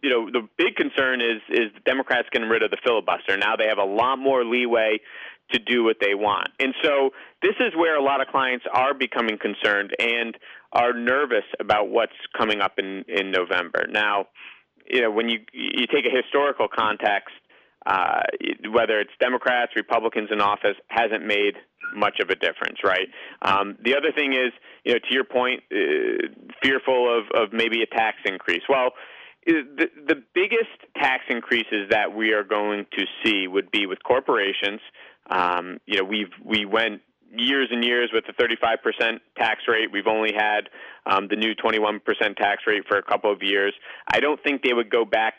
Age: 30-49